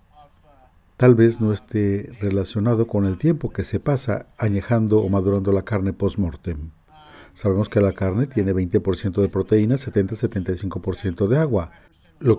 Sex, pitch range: male, 95-115 Hz